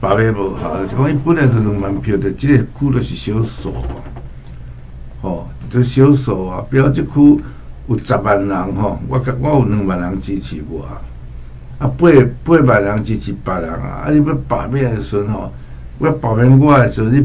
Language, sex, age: Chinese, male, 60-79